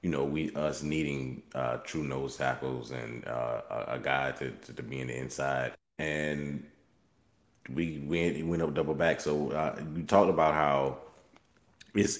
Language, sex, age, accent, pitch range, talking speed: English, male, 30-49, American, 75-95 Hz, 170 wpm